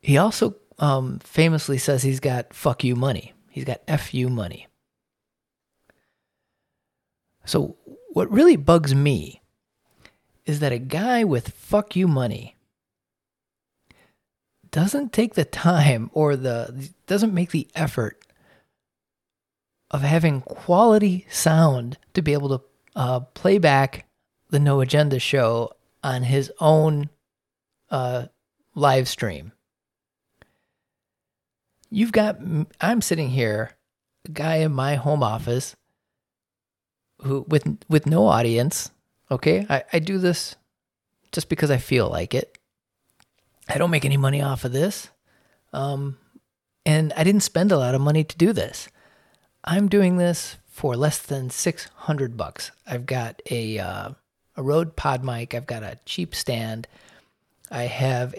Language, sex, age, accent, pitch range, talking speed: English, male, 30-49, American, 125-165 Hz, 135 wpm